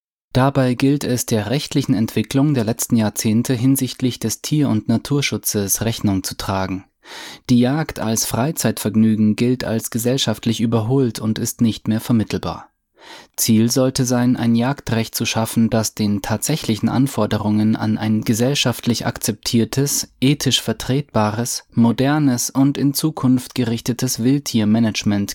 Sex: male